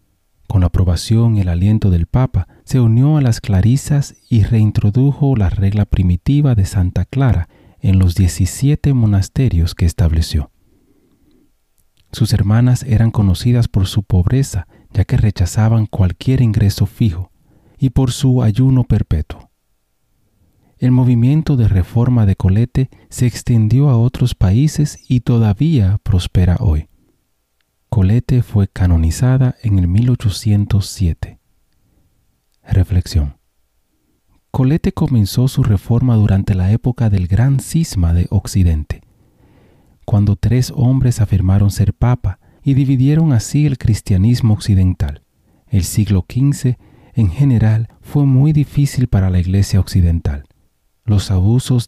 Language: Spanish